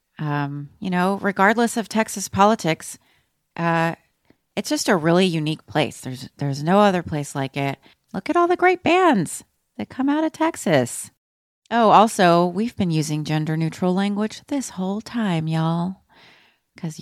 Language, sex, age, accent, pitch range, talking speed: English, female, 30-49, American, 150-210 Hz, 160 wpm